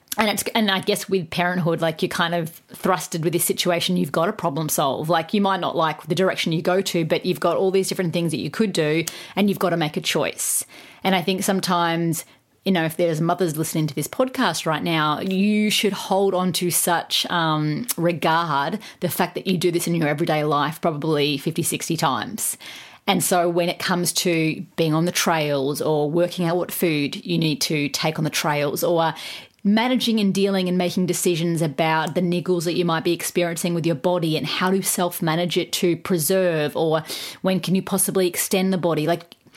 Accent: Australian